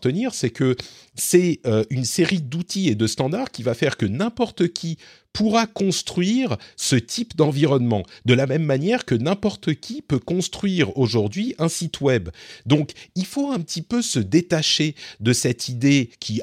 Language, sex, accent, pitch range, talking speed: French, male, French, 115-165 Hz, 165 wpm